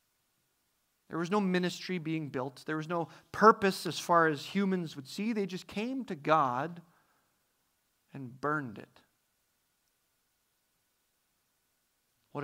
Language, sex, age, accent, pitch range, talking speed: English, male, 40-59, American, 170-230 Hz, 120 wpm